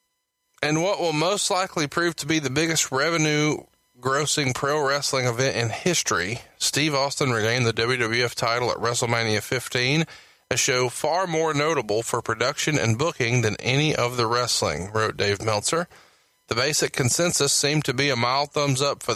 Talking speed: 165 wpm